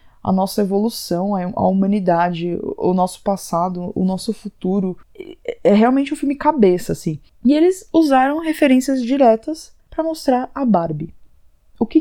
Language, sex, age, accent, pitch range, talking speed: Portuguese, female, 20-39, Brazilian, 180-230 Hz, 140 wpm